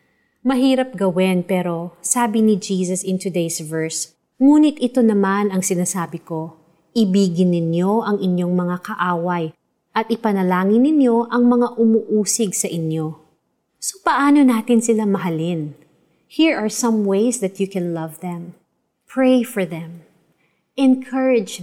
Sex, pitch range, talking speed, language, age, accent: female, 180-230 Hz, 130 wpm, Filipino, 30-49, native